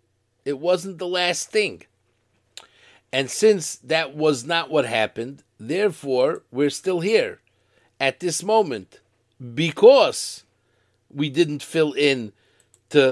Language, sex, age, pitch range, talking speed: English, male, 50-69, 115-170 Hz, 115 wpm